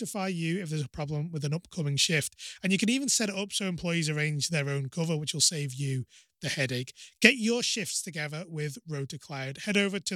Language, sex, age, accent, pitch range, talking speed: English, male, 30-49, British, 150-195 Hz, 225 wpm